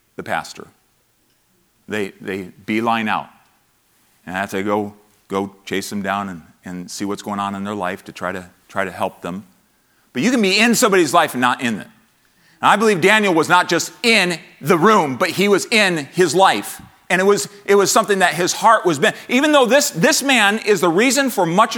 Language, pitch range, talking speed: English, 155-230 Hz, 220 wpm